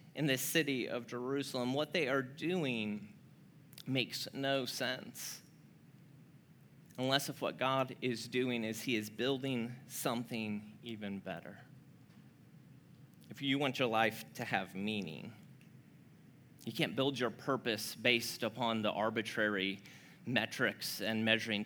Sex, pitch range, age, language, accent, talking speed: male, 120-150 Hz, 30-49, English, American, 125 wpm